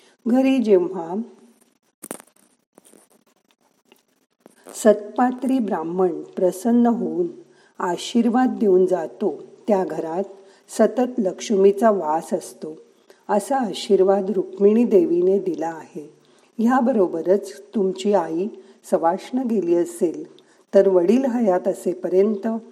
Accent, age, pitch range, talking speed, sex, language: native, 50-69, 185-235 Hz, 80 wpm, female, Marathi